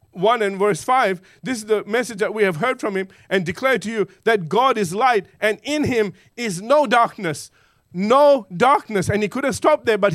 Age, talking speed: 50-69, 220 wpm